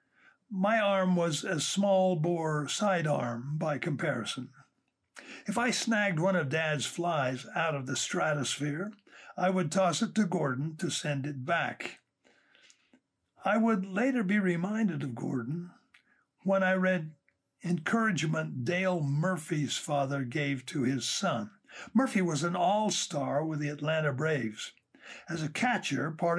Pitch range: 150-195 Hz